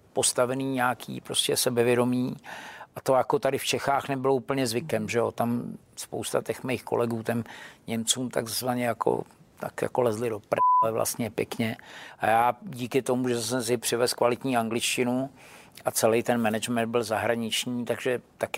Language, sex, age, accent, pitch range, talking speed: Czech, male, 50-69, native, 115-125 Hz, 160 wpm